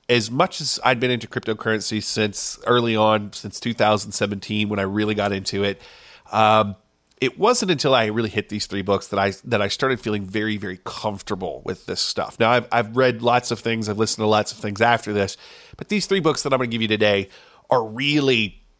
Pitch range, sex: 105-125 Hz, male